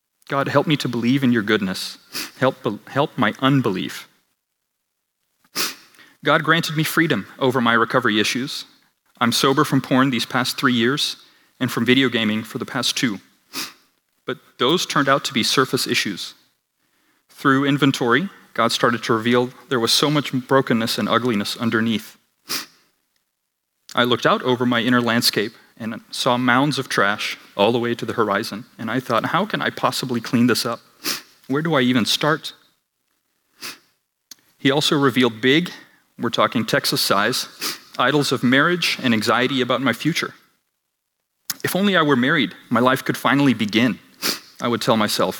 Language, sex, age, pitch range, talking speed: English, male, 30-49, 115-140 Hz, 160 wpm